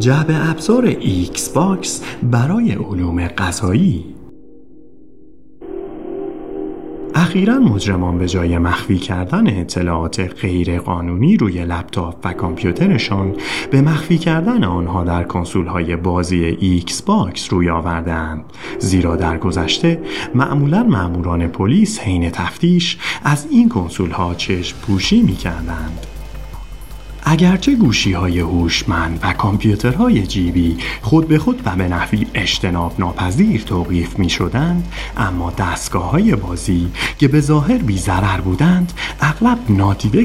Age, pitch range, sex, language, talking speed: 30-49, 90-140 Hz, male, Persian, 110 wpm